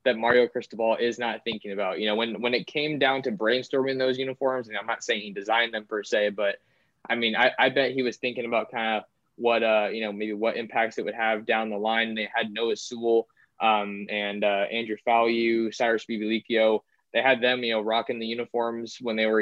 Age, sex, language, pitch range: 20-39, male, English, 110-130 Hz